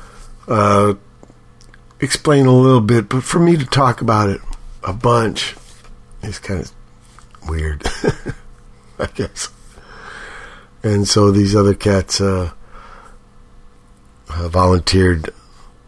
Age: 60-79